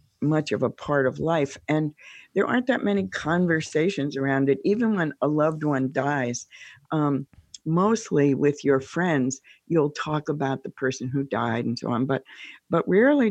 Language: English